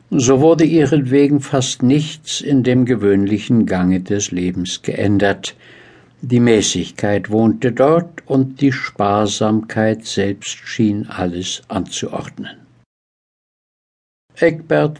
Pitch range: 100-125 Hz